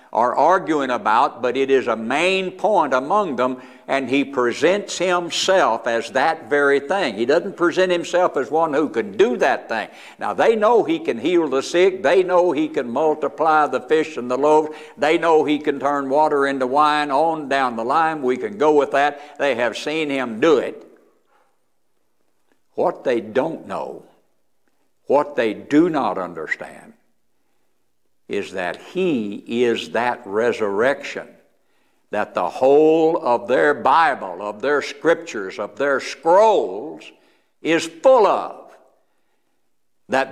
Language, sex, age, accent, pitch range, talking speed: English, male, 60-79, American, 140-185 Hz, 150 wpm